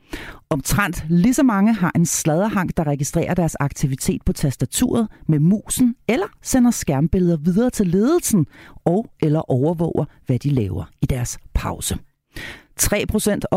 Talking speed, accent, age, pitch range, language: 135 wpm, native, 40-59, 140-220 Hz, Danish